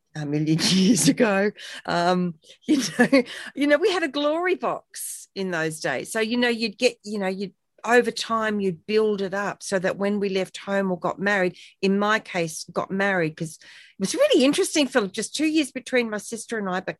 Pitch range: 175-215 Hz